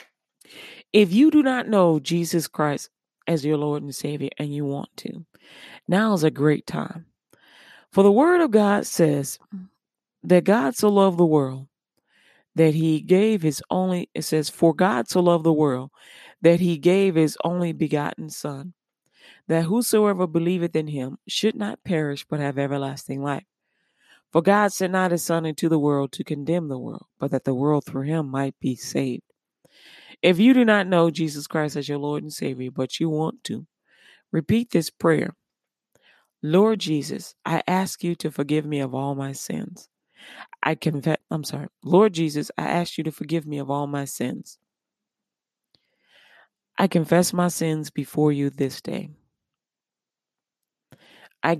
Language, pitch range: English, 145-185 Hz